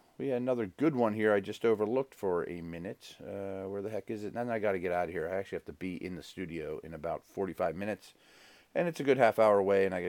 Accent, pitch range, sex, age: American, 100-140 Hz, male, 40-59